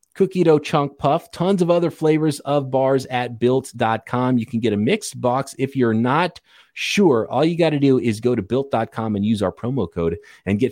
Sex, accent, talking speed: male, American, 215 wpm